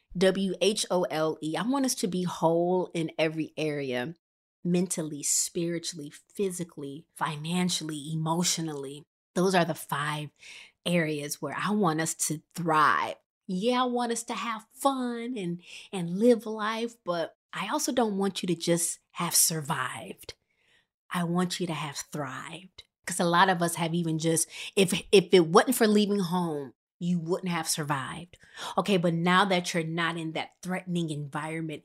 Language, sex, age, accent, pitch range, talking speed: English, female, 30-49, American, 160-195 Hz, 155 wpm